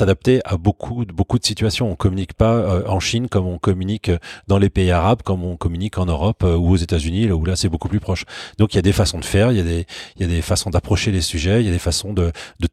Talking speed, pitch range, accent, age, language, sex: 295 wpm, 90-105 Hz, French, 30-49, French, male